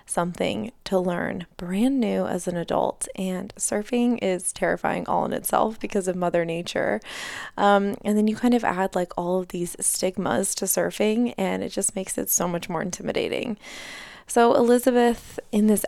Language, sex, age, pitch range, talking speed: English, female, 20-39, 185-220 Hz, 175 wpm